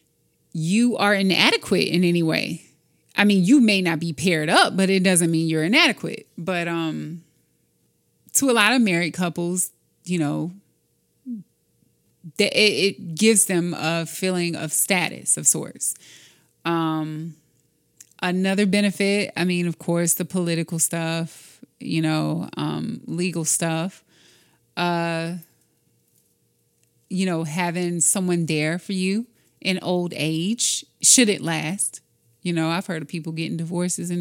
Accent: American